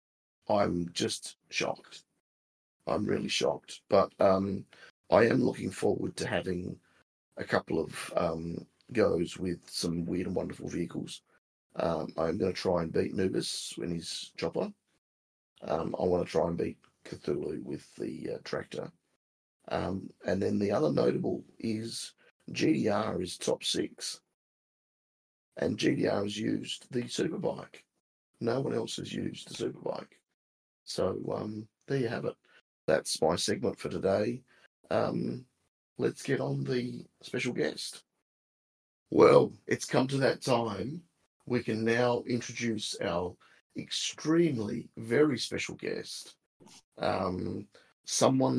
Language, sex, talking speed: English, male, 130 wpm